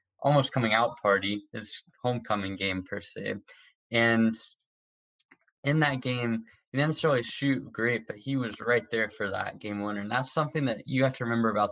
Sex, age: male, 10-29